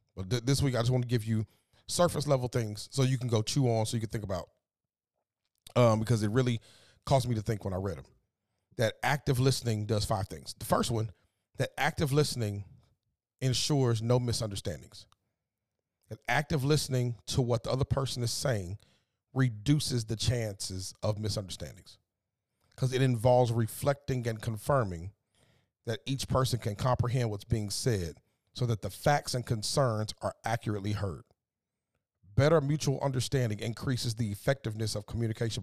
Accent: American